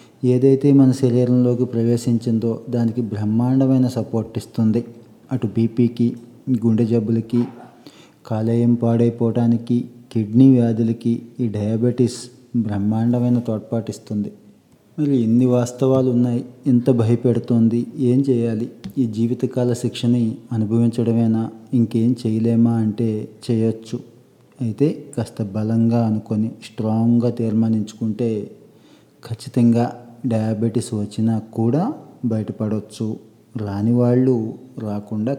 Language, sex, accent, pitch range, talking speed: Telugu, male, native, 110-120 Hz, 85 wpm